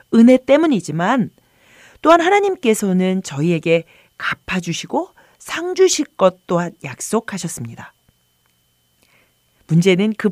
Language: Korean